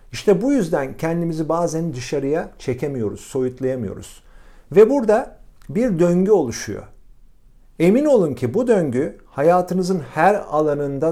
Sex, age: male, 50-69